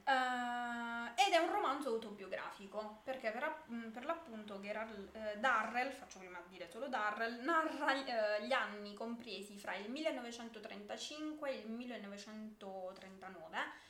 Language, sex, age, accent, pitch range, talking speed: Italian, female, 20-39, native, 195-245 Hz, 125 wpm